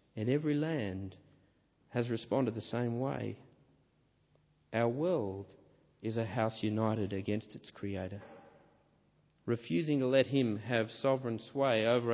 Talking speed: 125 wpm